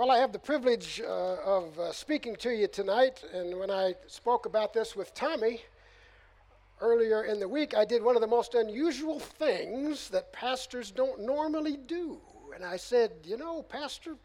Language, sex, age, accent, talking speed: English, male, 60-79, American, 180 wpm